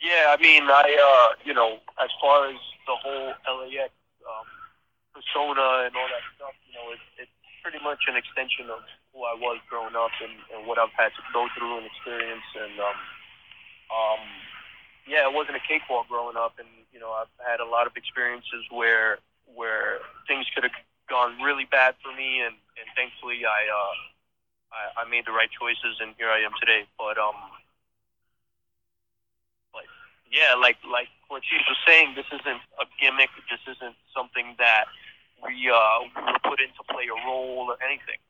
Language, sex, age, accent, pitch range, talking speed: English, male, 20-39, American, 115-130 Hz, 175 wpm